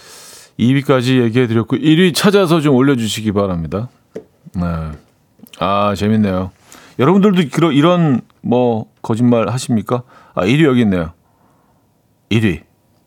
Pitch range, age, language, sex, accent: 110-140 Hz, 40-59, Korean, male, native